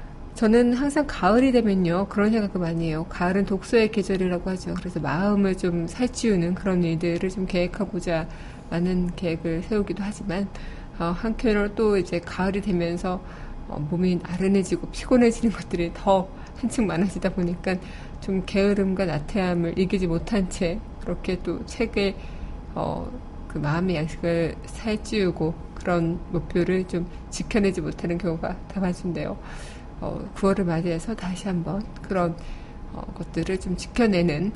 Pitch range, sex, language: 170-205 Hz, female, Korean